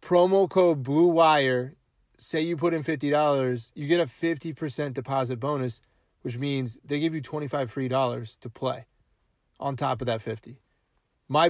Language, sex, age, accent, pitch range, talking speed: English, male, 20-39, American, 125-155 Hz, 175 wpm